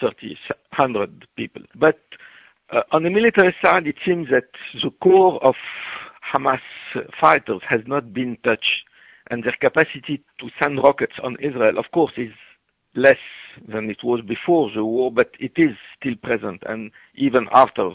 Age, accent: 60-79, French